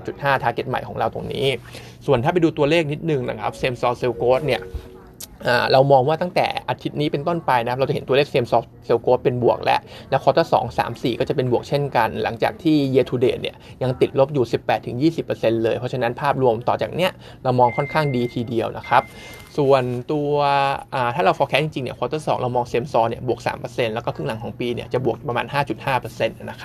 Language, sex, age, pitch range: Thai, male, 20-39, 125-150 Hz